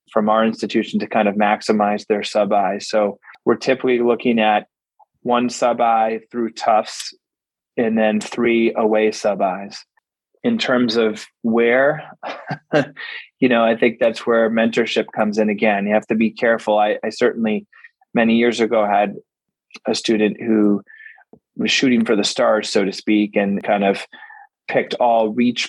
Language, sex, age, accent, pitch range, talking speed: English, male, 20-39, American, 105-120 Hz, 165 wpm